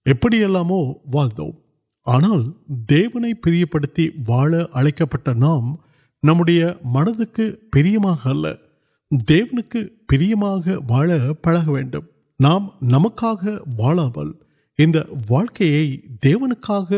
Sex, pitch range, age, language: male, 135-195 Hz, 50-69, Urdu